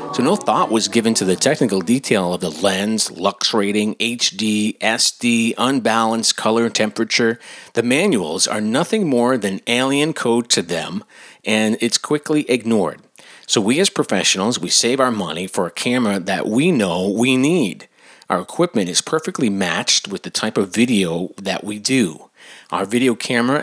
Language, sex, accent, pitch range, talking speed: English, male, American, 105-135 Hz, 165 wpm